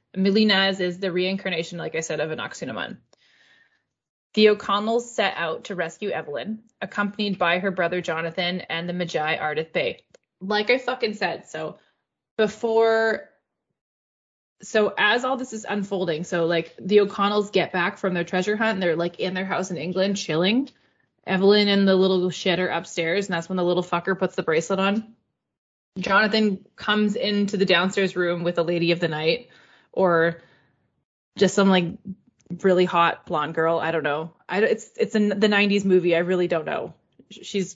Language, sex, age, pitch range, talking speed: English, female, 20-39, 175-210 Hz, 175 wpm